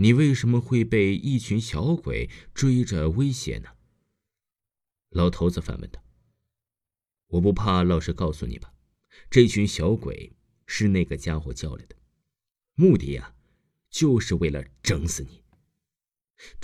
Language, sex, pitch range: Chinese, male, 85-120 Hz